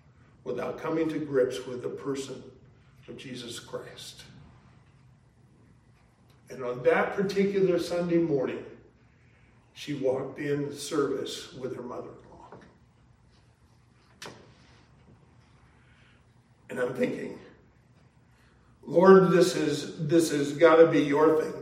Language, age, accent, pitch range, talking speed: English, 50-69, American, 125-155 Hz, 95 wpm